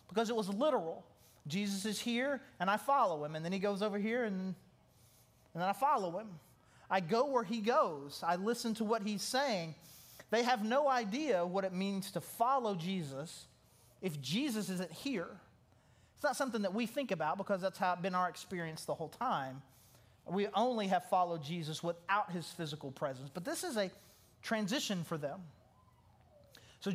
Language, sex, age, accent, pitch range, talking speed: English, male, 30-49, American, 155-230 Hz, 180 wpm